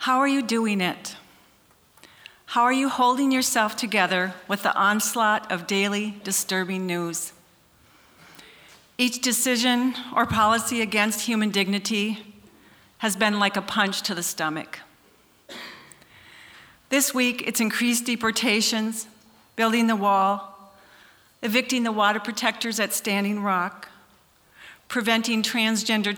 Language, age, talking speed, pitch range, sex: English, 40-59, 115 wpm, 190-225 Hz, female